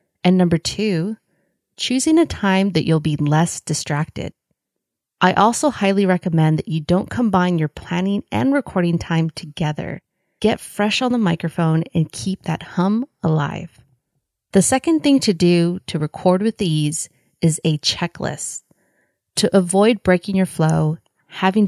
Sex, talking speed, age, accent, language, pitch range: female, 145 wpm, 30-49, American, English, 160-195 Hz